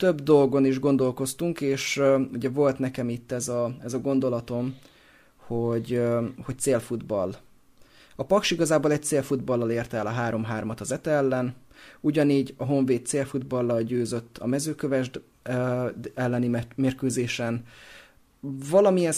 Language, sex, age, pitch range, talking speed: Hungarian, male, 30-49, 115-140 Hz, 135 wpm